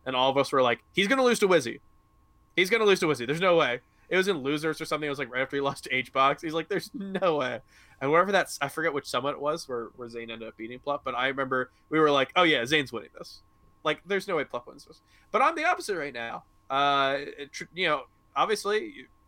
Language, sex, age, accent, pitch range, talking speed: English, male, 20-39, American, 125-170 Hz, 270 wpm